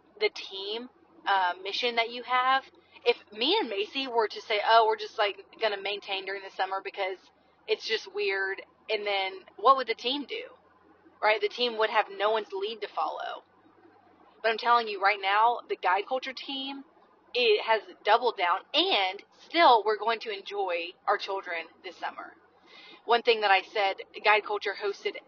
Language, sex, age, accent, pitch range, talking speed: English, female, 30-49, American, 200-325 Hz, 180 wpm